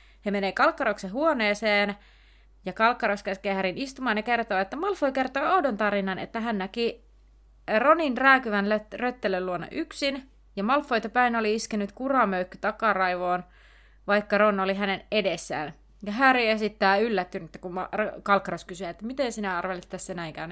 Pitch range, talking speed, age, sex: 190-235 Hz, 145 wpm, 30-49, female